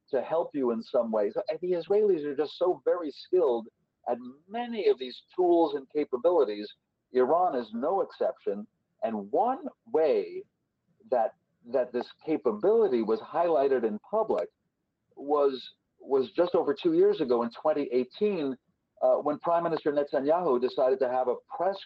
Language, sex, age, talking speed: English, male, 50-69, 150 wpm